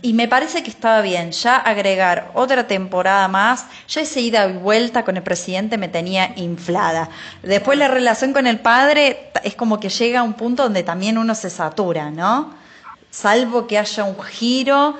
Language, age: Spanish, 20-39